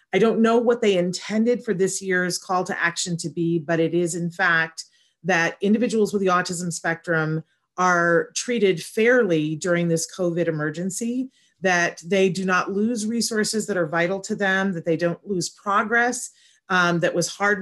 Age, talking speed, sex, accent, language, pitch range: 30-49, 175 wpm, female, American, English, 165-200 Hz